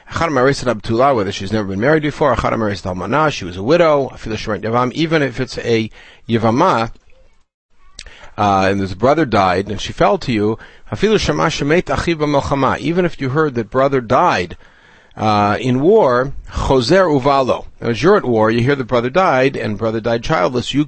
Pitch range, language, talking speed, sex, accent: 110-150 Hz, English, 145 wpm, male, American